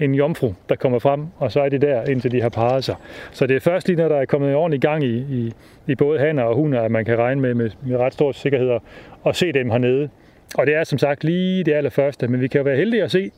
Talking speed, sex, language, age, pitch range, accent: 285 wpm, male, Danish, 30-49, 120-155 Hz, native